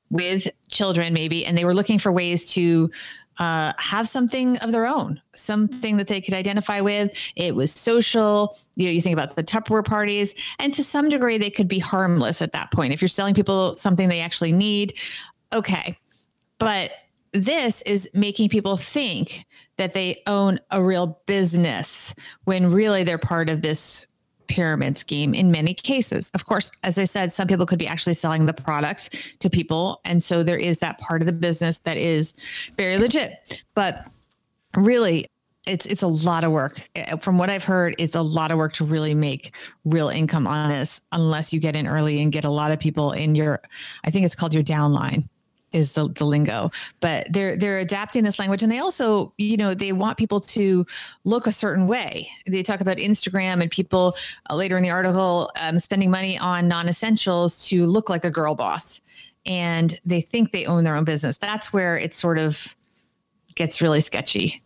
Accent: American